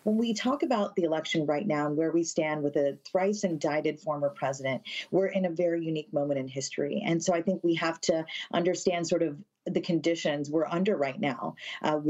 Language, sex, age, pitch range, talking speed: English, female, 40-59, 170-210 Hz, 210 wpm